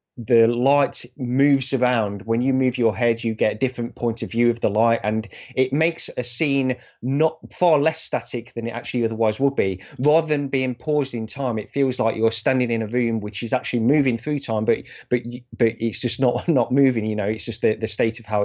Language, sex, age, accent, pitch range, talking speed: English, male, 30-49, British, 115-135 Hz, 230 wpm